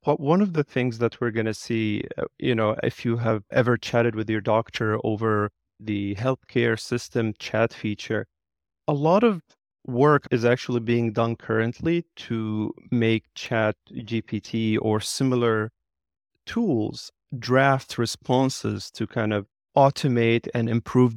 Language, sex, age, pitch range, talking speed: English, male, 30-49, 110-125 Hz, 140 wpm